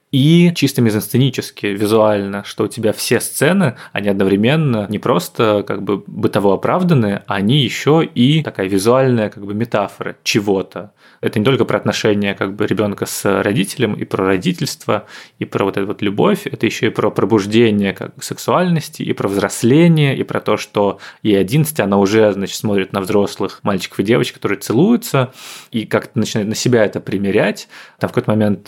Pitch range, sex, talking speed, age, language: 100-125 Hz, male, 175 wpm, 20-39, Russian